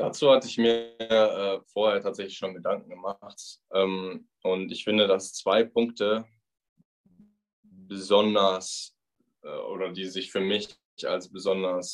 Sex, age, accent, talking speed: male, 10-29, German, 130 wpm